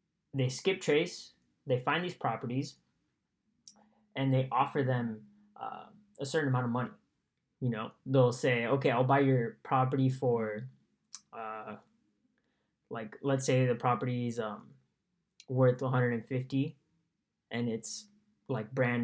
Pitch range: 125-155 Hz